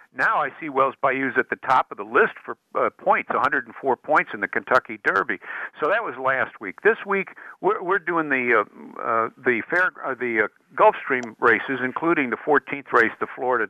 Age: 60-79